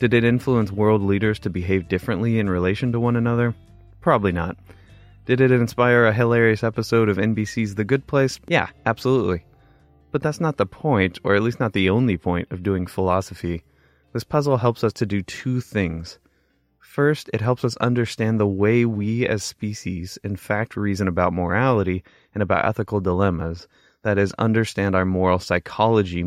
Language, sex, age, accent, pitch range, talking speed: English, male, 20-39, American, 95-115 Hz, 175 wpm